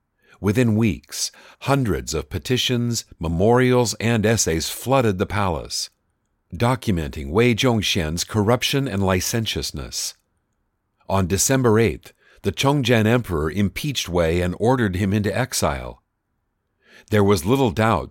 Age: 50-69